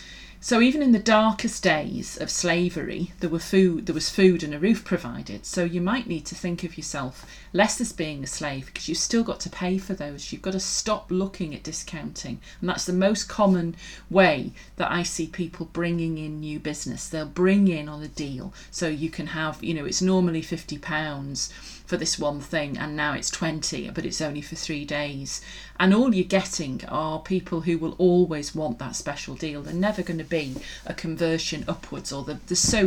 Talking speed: 205 wpm